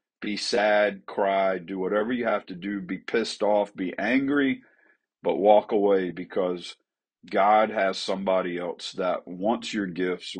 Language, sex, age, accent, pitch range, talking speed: English, male, 50-69, American, 90-105 Hz, 150 wpm